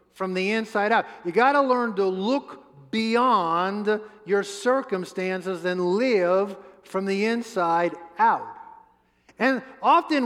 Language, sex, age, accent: English, male, 50-69, American